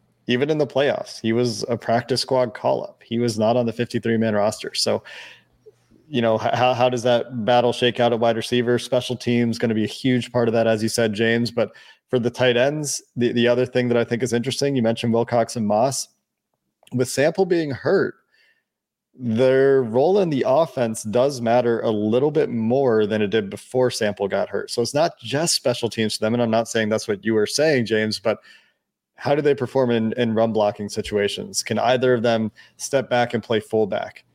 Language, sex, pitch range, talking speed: English, male, 110-125 Hz, 215 wpm